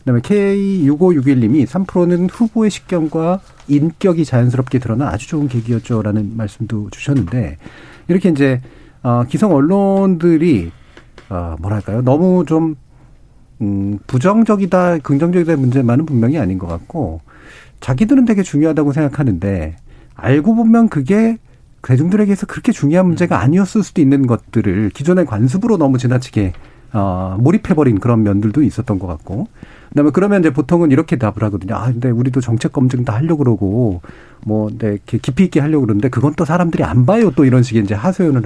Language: Korean